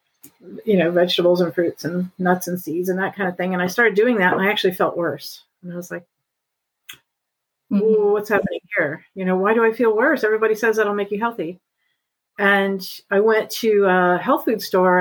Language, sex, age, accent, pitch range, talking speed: English, female, 50-69, American, 180-215 Hz, 210 wpm